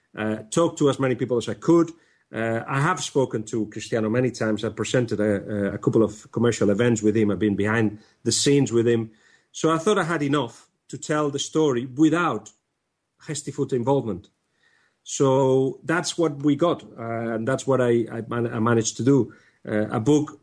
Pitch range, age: 110-140 Hz, 40-59